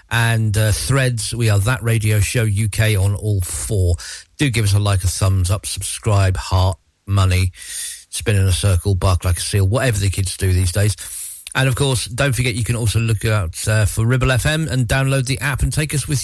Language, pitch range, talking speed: English, 95-125 Hz, 220 wpm